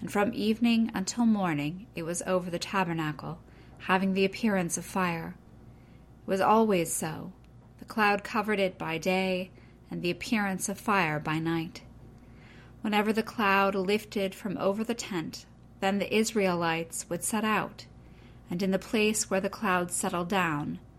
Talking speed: 155 wpm